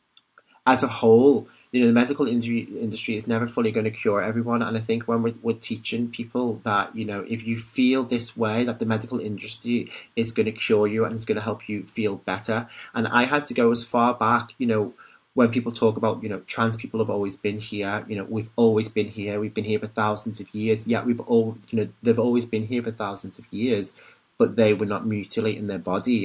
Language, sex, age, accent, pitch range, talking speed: English, male, 30-49, British, 105-115 Hz, 235 wpm